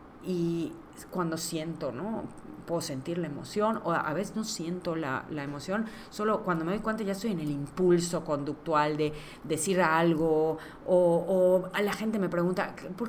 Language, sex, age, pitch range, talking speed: Spanish, female, 30-49, 160-200 Hz, 180 wpm